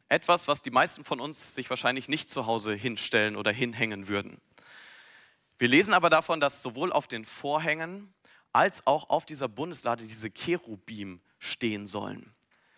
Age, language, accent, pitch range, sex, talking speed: 40-59, German, German, 120-170 Hz, male, 155 wpm